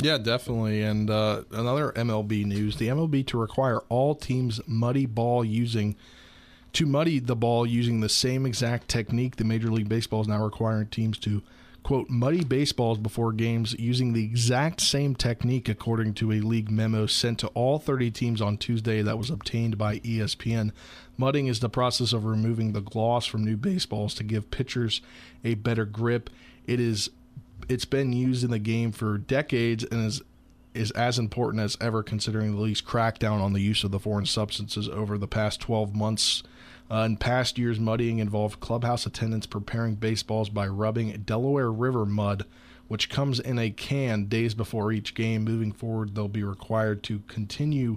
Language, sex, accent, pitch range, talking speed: English, male, American, 110-120 Hz, 180 wpm